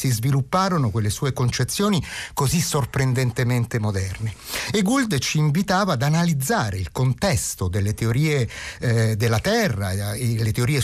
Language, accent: Italian, native